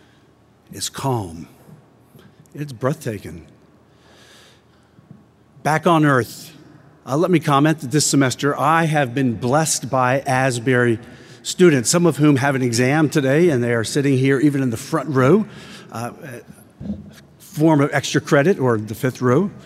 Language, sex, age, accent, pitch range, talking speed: English, male, 50-69, American, 120-160 Hz, 145 wpm